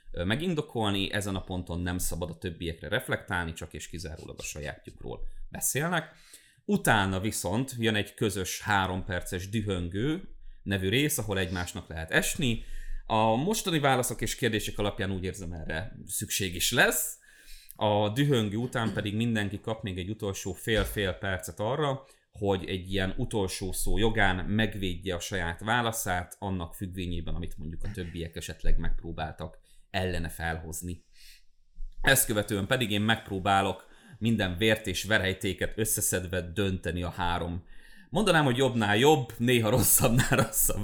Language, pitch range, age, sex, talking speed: Hungarian, 90-115 Hz, 30-49, male, 135 wpm